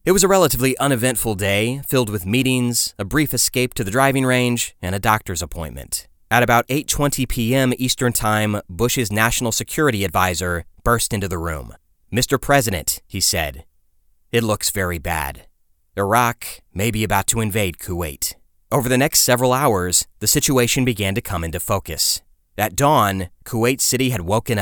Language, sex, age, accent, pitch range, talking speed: English, male, 30-49, American, 90-120 Hz, 165 wpm